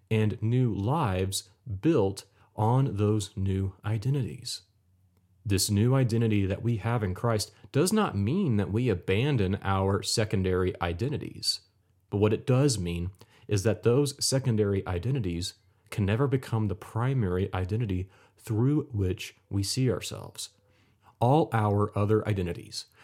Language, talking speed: English, 130 wpm